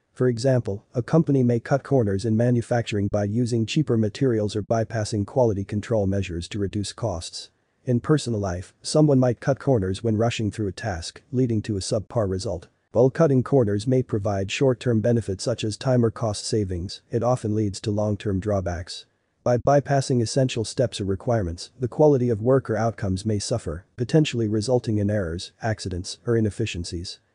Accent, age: American, 40-59